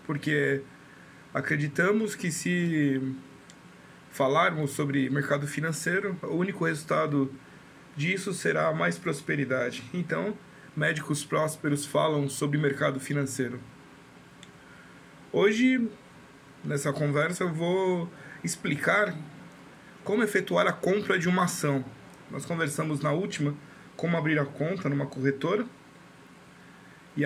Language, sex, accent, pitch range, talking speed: Portuguese, male, Brazilian, 140-170 Hz, 100 wpm